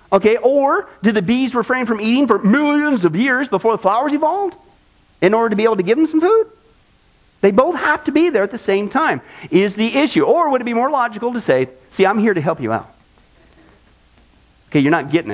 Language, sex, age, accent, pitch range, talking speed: English, male, 40-59, American, 190-260 Hz, 225 wpm